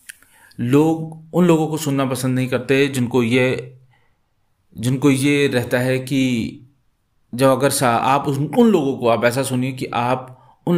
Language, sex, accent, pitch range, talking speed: Hindi, male, native, 105-140 Hz, 155 wpm